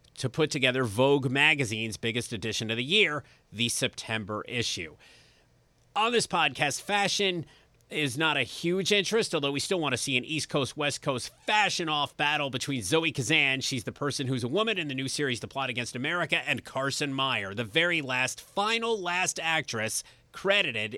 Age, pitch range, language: 30-49, 125-165 Hz, English